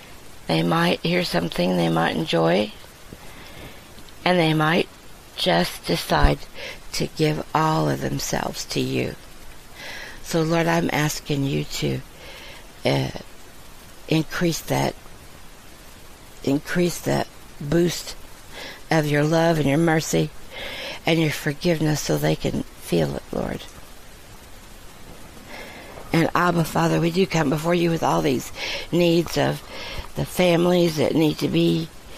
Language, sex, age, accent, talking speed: English, female, 60-79, American, 120 wpm